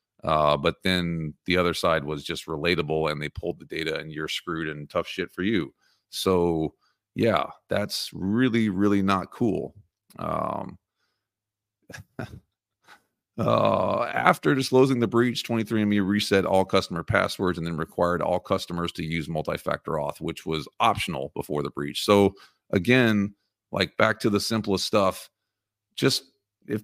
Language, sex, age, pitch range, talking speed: English, male, 40-59, 90-110 Hz, 145 wpm